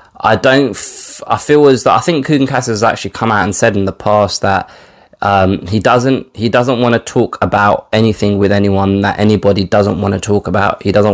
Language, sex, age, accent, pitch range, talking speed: English, male, 20-39, British, 95-115 Hz, 220 wpm